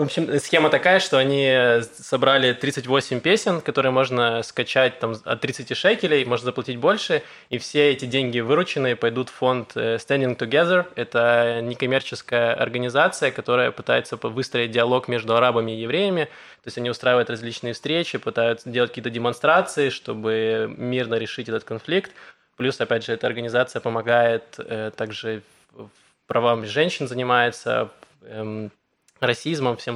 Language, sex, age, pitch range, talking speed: Russian, male, 20-39, 120-140 Hz, 135 wpm